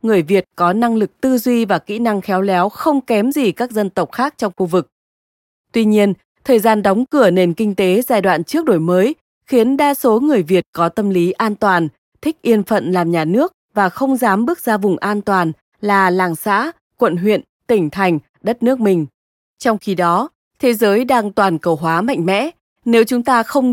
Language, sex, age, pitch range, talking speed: Vietnamese, female, 20-39, 185-245 Hz, 215 wpm